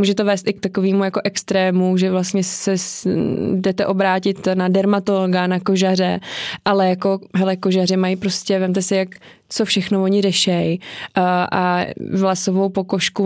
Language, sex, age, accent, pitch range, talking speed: Czech, female, 20-39, native, 175-195 Hz, 145 wpm